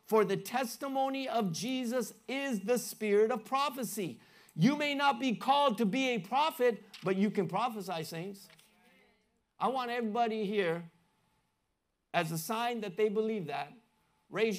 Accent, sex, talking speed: American, male, 150 wpm